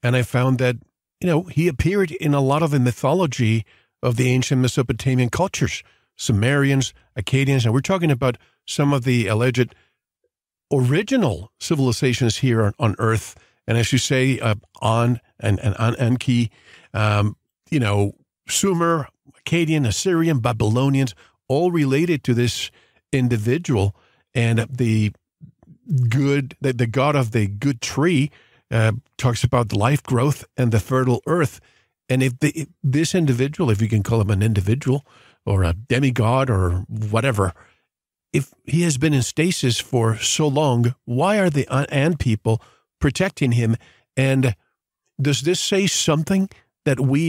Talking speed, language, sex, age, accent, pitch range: 150 wpm, English, male, 50-69, American, 115-145 Hz